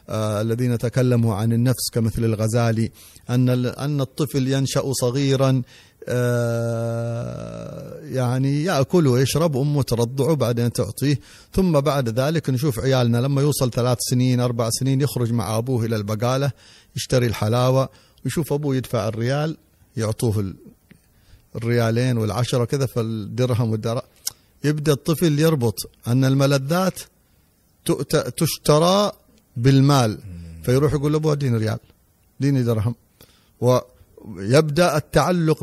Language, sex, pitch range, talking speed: Arabic, male, 115-145 Hz, 110 wpm